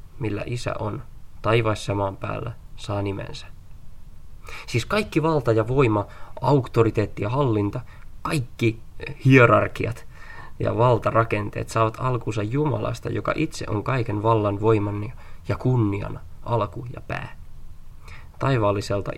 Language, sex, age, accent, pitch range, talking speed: Finnish, male, 20-39, native, 100-120 Hz, 110 wpm